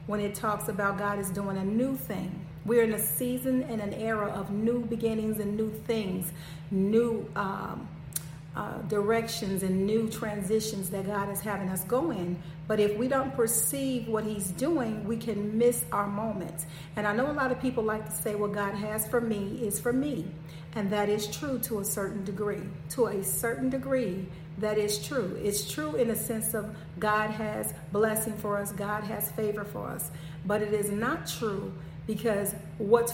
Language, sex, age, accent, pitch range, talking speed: English, female, 40-59, American, 190-225 Hz, 190 wpm